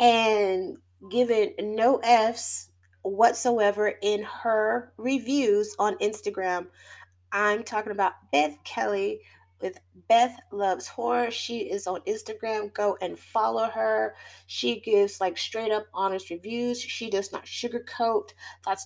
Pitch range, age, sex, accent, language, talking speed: 185-230 Hz, 30-49, female, American, English, 120 wpm